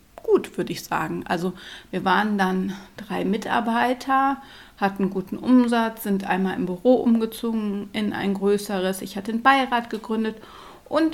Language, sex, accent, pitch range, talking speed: German, female, German, 190-230 Hz, 140 wpm